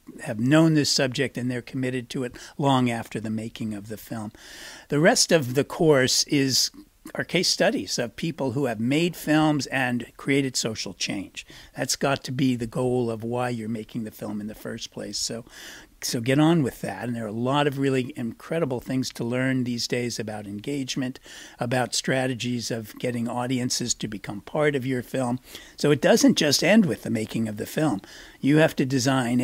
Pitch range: 120-145 Hz